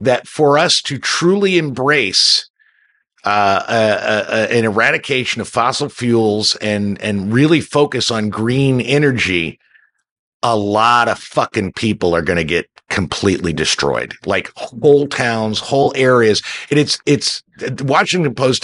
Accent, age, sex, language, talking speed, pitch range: American, 50-69, male, English, 140 wpm, 105-135 Hz